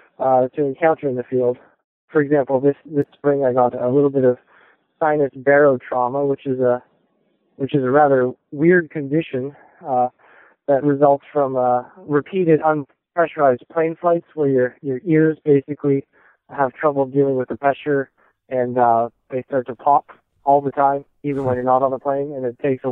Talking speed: 180 wpm